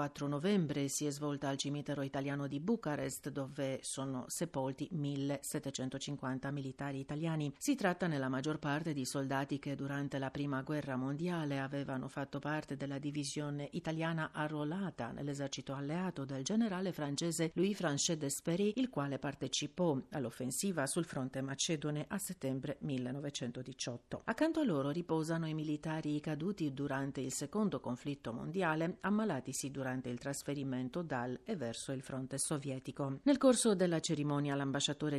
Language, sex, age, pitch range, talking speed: Italian, female, 50-69, 135-155 Hz, 140 wpm